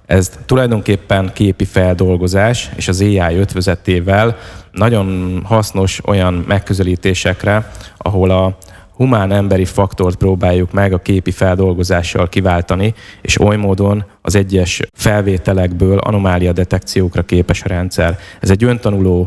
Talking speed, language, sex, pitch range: 115 wpm, Hungarian, male, 90-100 Hz